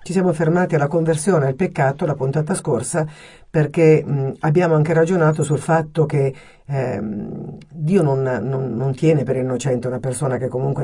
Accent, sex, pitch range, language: native, female, 130-155 Hz, Italian